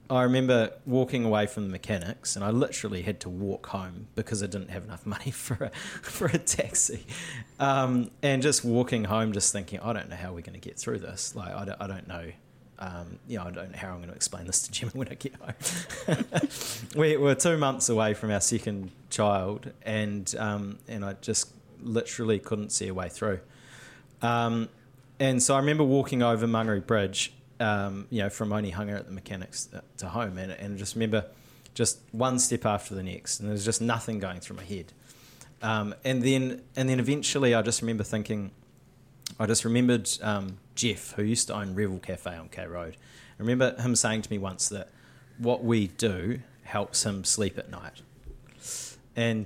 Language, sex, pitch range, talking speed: English, male, 100-130 Hz, 200 wpm